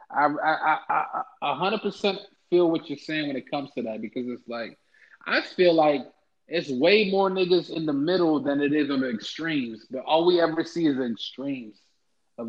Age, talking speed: 20-39, 200 wpm